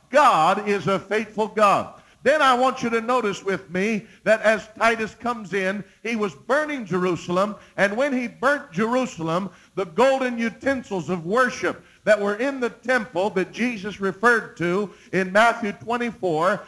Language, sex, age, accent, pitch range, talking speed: English, male, 50-69, American, 195-235 Hz, 160 wpm